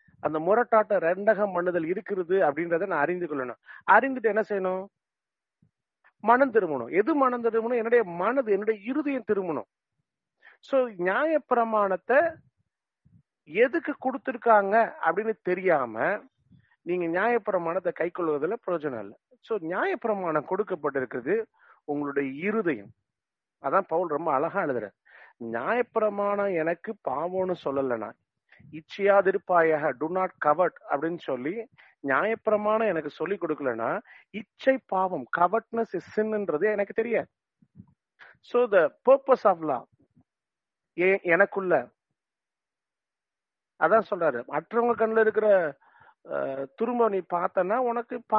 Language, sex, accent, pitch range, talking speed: English, male, Indian, 175-235 Hz, 80 wpm